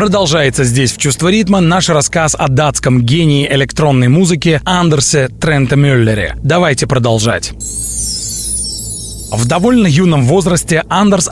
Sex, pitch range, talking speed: male, 135-175 Hz, 115 wpm